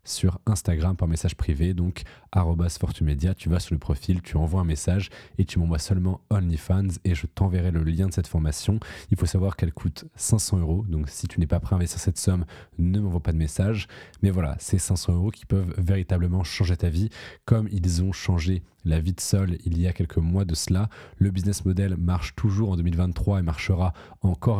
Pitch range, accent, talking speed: 85-100 Hz, French, 215 wpm